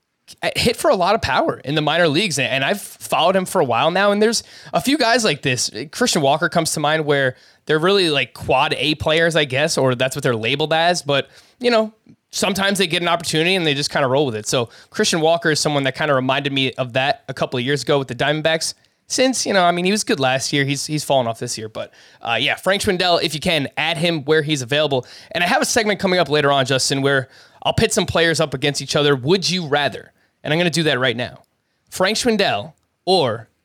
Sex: male